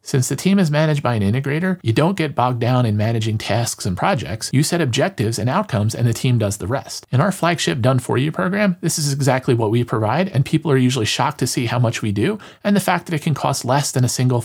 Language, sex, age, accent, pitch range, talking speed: English, male, 40-59, American, 120-155 Hz, 265 wpm